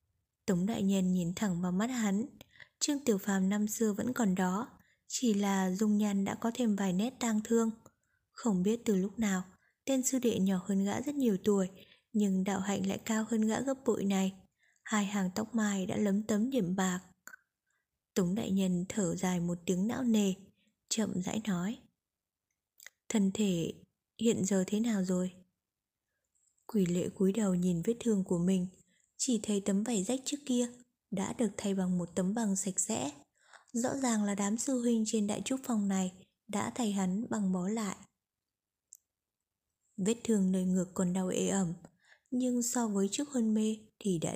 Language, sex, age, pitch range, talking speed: Vietnamese, female, 20-39, 190-230 Hz, 185 wpm